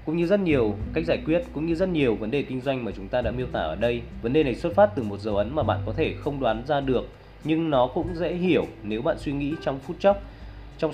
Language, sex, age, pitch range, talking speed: Vietnamese, male, 20-39, 105-145 Hz, 290 wpm